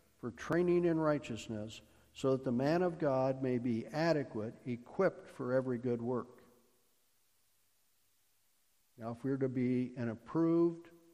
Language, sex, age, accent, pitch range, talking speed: English, male, 60-79, American, 110-130 Hz, 140 wpm